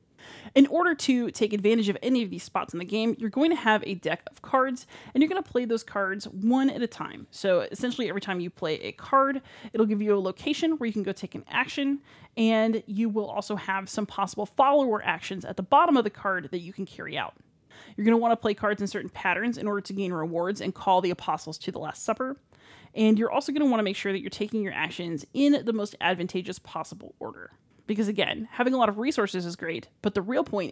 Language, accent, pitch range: English, American, 195-235 Hz